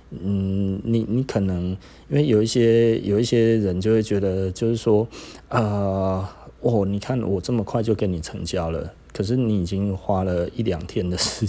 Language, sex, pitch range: Chinese, male, 95-115 Hz